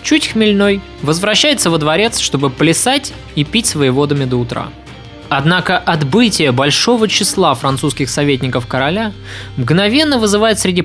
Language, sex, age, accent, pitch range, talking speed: Russian, male, 20-39, native, 145-210 Hz, 125 wpm